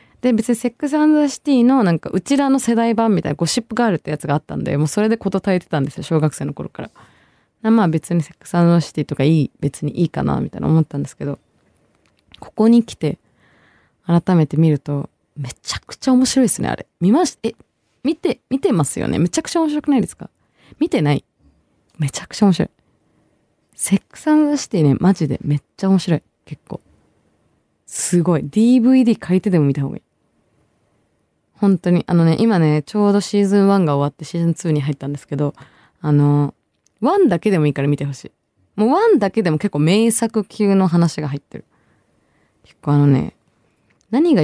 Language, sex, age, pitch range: Japanese, female, 20-39, 150-235 Hz